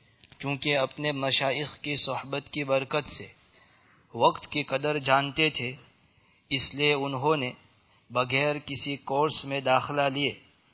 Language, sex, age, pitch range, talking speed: English, male, 50-69, 130-145 Hz, 130 wpm